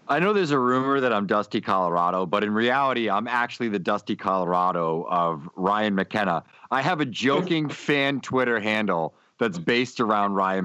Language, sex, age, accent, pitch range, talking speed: English, male, 40-59, American, 95-125 Hz, 175 wpm